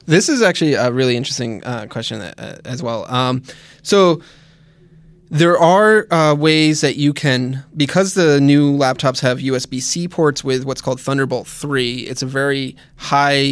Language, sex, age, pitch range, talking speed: English, male, 20-39, 130-155 Hz, 160 wpm